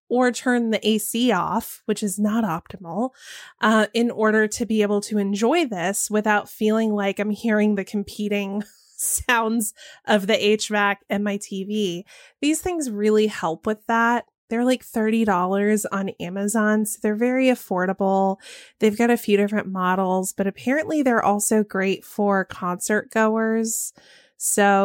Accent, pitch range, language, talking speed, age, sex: American, 195-230 Hz, English, 150 wpm, 20-39, female